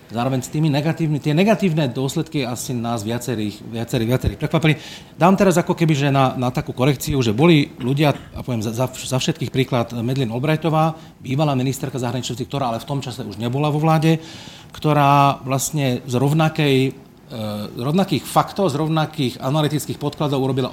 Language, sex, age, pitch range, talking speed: Slovak, male, 40-59, 120-150 Hz, 155 wpm